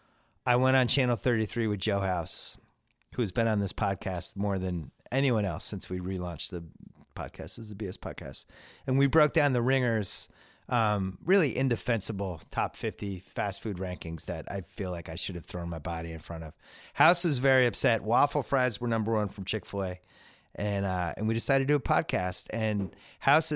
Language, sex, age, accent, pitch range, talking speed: English, male, 30-49, American, 95-125 Hz, 195 wpm